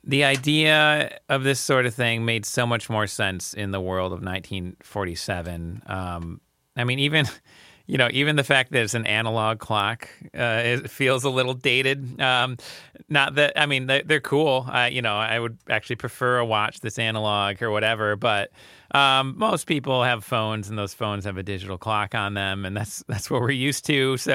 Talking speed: 195 wpm